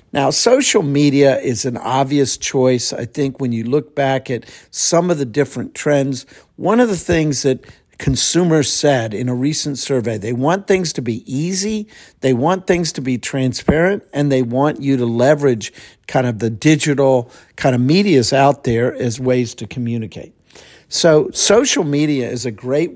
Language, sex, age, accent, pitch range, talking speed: English, male, 50-69, American, 125-165 Hz, 175 wpm